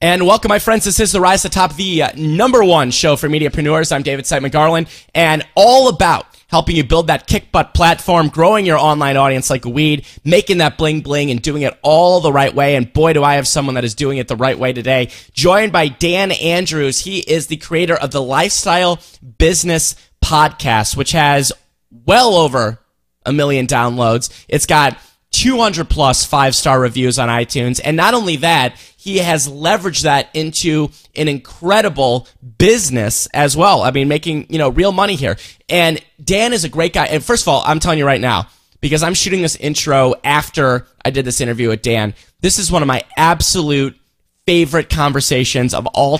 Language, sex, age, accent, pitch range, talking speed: English, male, 20-39, American, 130-165 Hz, 195 wpm